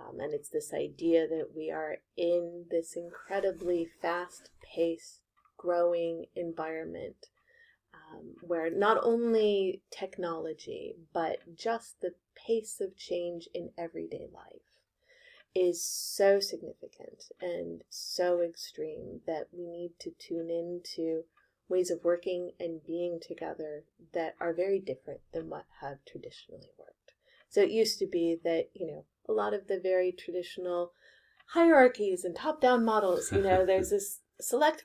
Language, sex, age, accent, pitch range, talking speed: Dutch, female, 30-49, American, 170-230 Hz, 135 wpm